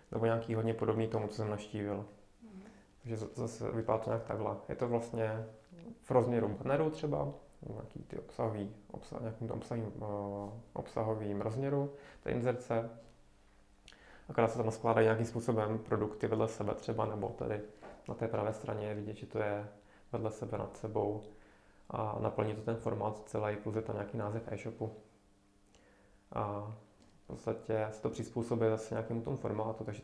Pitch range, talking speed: 105-115 Hz, 155 wpm